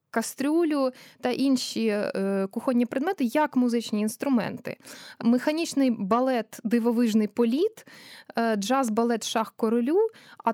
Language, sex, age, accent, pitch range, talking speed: Ukrainian, female, 20-39, native, 225-275 Hz, 90 wpm